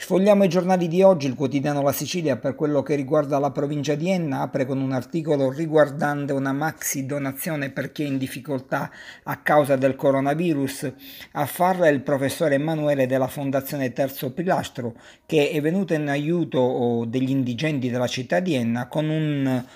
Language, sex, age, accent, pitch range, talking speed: Italian, male, 50-69, native, 135-165 Hz, 165 wpm